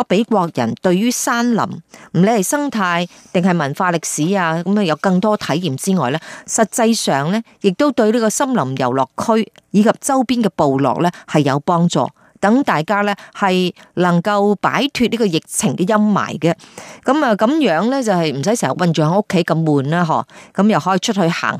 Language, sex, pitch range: Chinese, female, 160-220 Hz